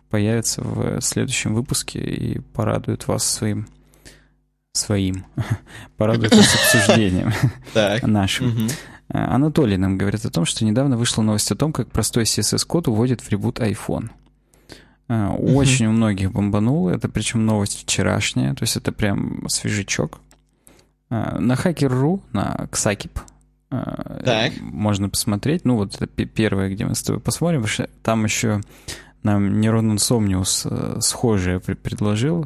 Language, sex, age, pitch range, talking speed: Russian, male, 20-39, 105-130 Hz, 120 wpm